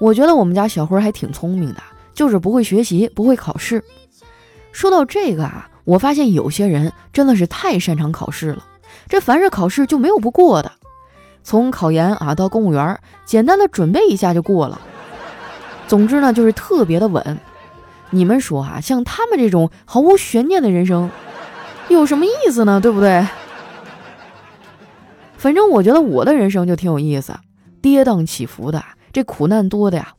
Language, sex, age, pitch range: Chinese, female, 20-39, 165-250 Hz